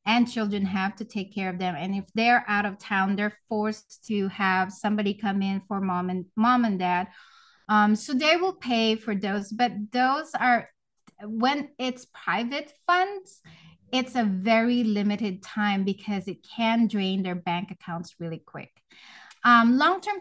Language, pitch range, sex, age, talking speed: English, 200-245 Hz, female, 20-39, 170 wpm